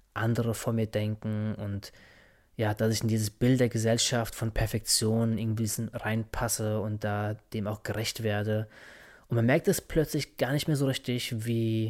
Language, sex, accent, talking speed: German, male, German, 170 wpm